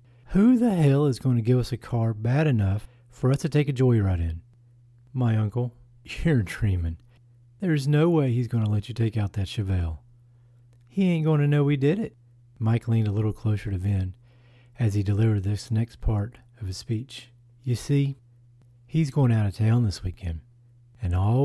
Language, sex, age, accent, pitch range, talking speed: English, male, 40-59, American, 110-130 Hz, 195 wpm